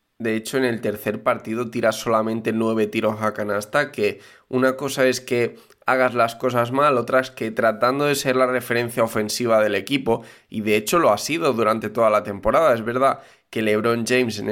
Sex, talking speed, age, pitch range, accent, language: male, 200 wpm, 20-39, 110-130 Hz, Spanish, Spanish